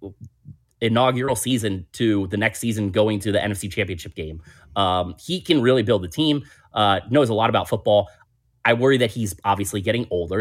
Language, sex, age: English, male, 30-49